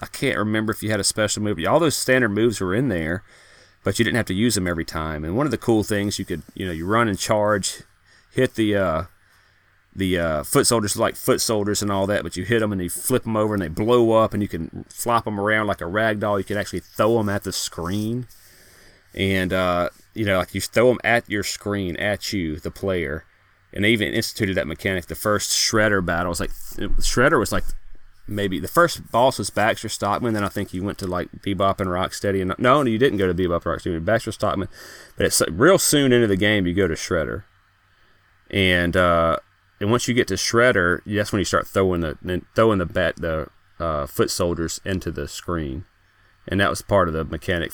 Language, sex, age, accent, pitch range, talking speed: English, male, 30-49, American, 90-110 Hz, 230 wpm